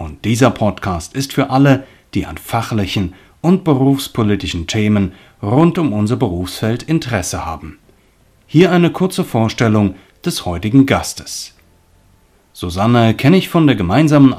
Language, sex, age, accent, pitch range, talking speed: German, male, 30-49, German, 95-140 Hz, 130 wpm